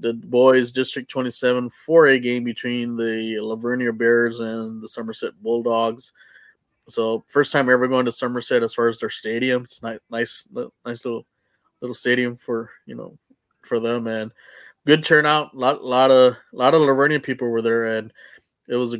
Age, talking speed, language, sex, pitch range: 20-39, 175 wpm, English, male, 115-135 Hz